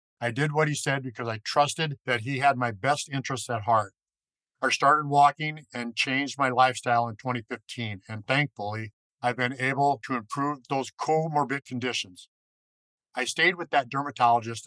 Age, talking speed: 50-69, 165 wpm